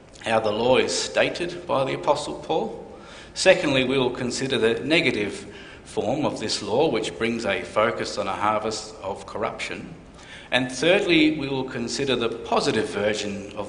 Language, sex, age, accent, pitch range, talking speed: English, male, 50-69, Australian, 110-145 Hz, 160 wpm